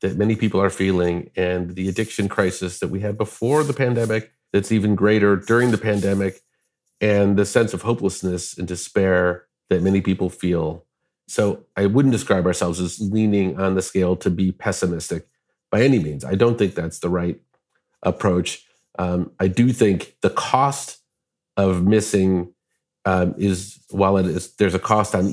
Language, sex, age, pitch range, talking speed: English, male, 40-59, 90-110 Hz, 165 wpm